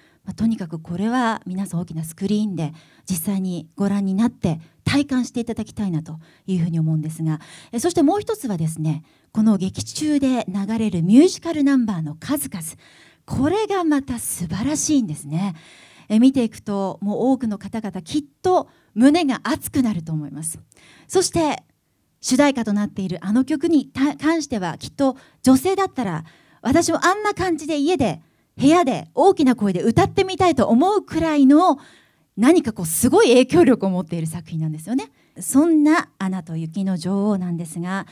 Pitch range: 170-275 Hz